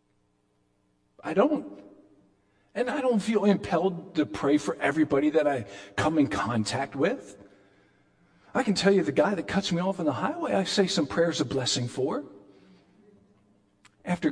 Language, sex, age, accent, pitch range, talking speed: English, male, 50-69, American, 100-145 Hz, 160 wpm